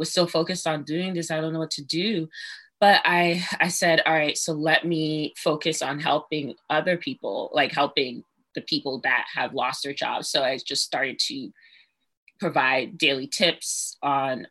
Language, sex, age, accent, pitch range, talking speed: English, female, 20-39, American, 150-195 Hz, 180 wpm